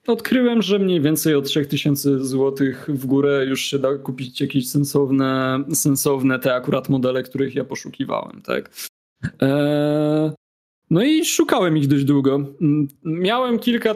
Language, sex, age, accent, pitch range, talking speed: Polish, male, 20-39, native, 130-155 Hz, 140 wpm